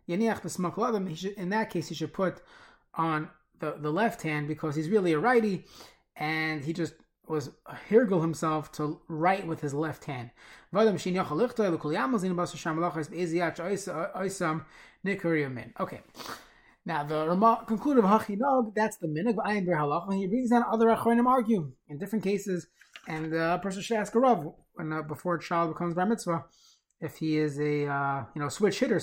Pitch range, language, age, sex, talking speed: 155-210 Hz, English, 20-39, male, 145 wpm